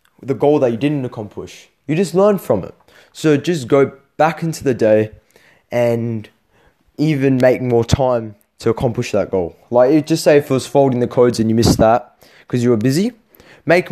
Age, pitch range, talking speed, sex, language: 20-39, 115-145 Hz, 200 wpm, male, English